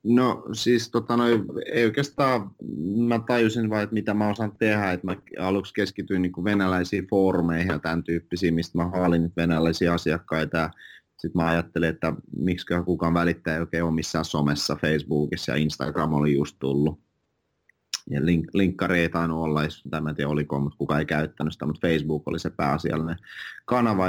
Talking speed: 175 wpm